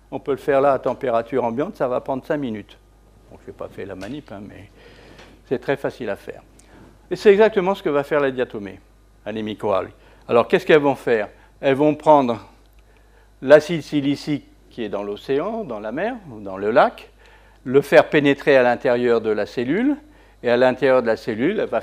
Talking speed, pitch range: 200 wpm, 110-150 Hz